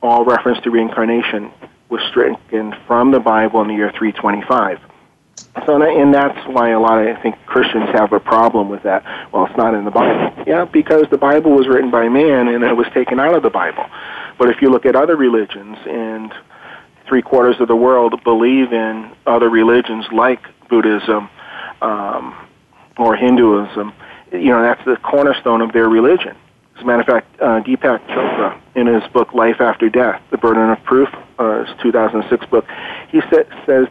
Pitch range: 110-125 Hz